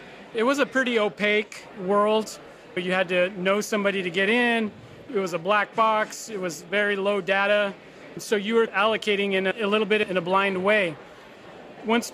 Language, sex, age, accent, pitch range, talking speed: English, male, 30-49, American, 180-215 Hz, 195 wpm